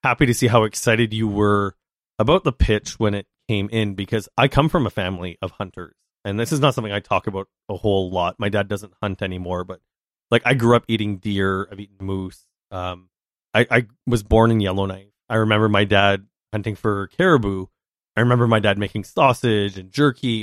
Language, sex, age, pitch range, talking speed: English, male, 30-49, 100-125 Hz, 205 wpm